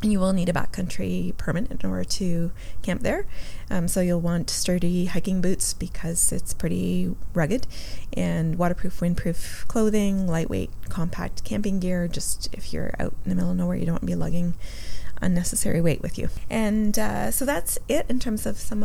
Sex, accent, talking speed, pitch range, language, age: female, American, 185 wpm, 160-195 Hz, English, 20-39